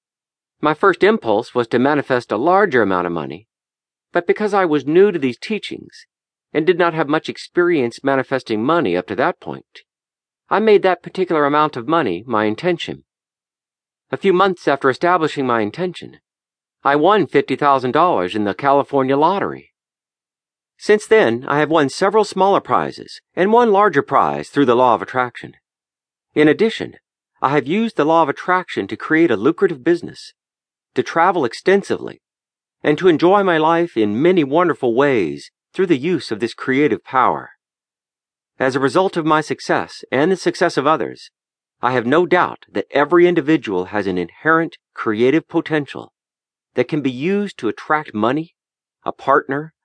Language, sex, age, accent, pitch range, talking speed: English, male, 50-69, American, 130-185 Hz, 165 wpm